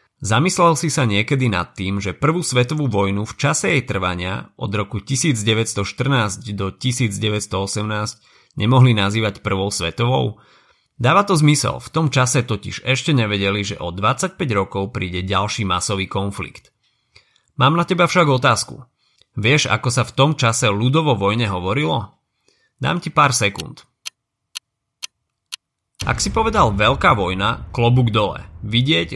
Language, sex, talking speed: Slovak, male, 135 wpm